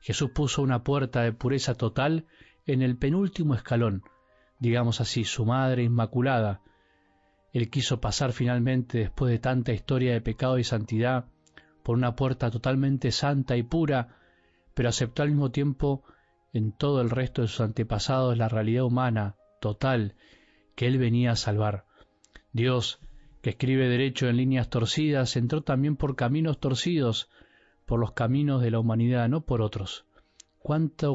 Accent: Argentinian